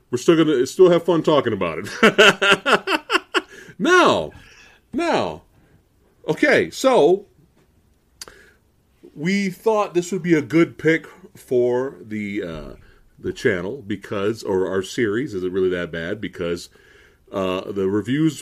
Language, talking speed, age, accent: English, 135 wpm, 40-59, American